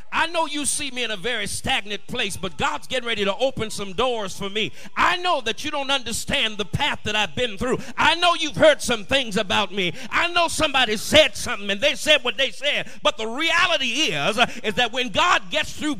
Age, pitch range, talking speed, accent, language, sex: 40-59, 225-310 Hz, 230 wpm, American, English, male